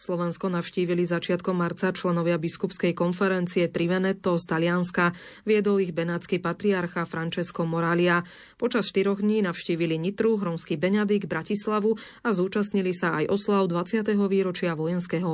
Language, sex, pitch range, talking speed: Slovak, female, 170-200 Hz, 125 wpm